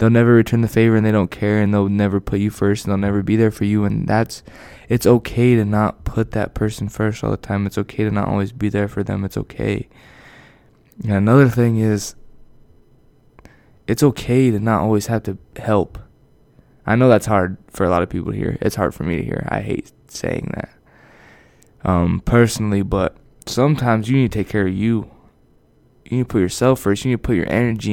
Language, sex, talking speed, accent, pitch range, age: English, male, 220 wpm, American, 100-115 Hz, 20-39